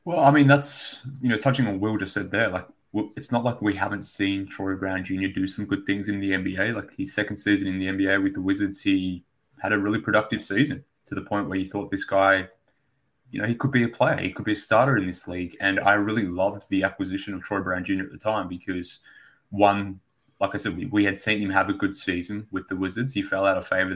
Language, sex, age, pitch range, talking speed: English, male, 20-39, 95-110 Hz, 260 wpm